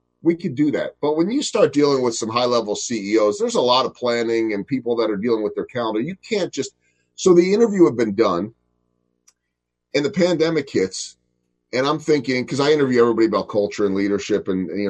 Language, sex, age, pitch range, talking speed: English, male, 30-49, 85-130 Hz, 220 wpm